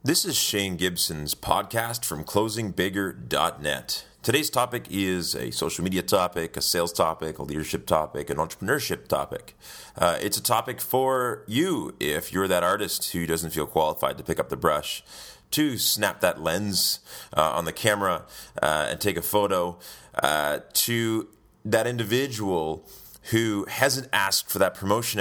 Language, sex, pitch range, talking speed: English, male, 85-125 Hz, 155 wpm